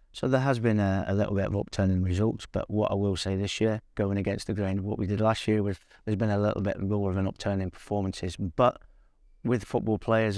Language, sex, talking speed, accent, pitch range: English, male, 255 wpm, British, 95-105 Hz